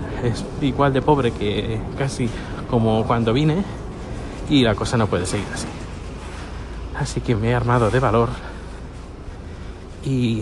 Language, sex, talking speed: Spanish, male, 140 wpm